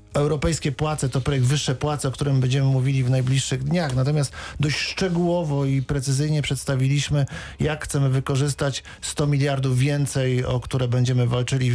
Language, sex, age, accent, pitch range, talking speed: Polish, male, 50-69, native, 125-140 Hz, 150 wpm